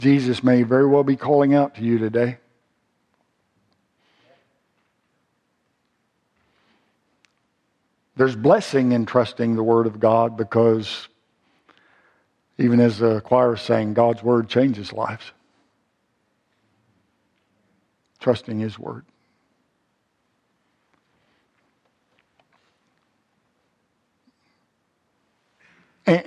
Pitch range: 115-155 Hz